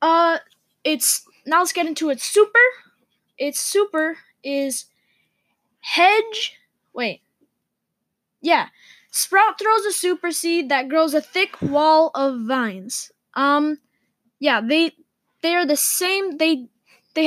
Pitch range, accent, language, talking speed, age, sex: 265-340 Hz, American, English, 120 wpm, 10-29, female